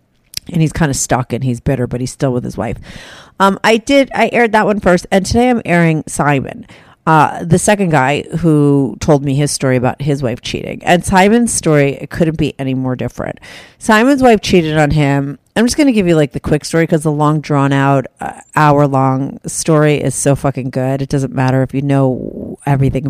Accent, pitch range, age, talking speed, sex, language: American, 135-185 Hz, 40-59, 220 wpm, female, English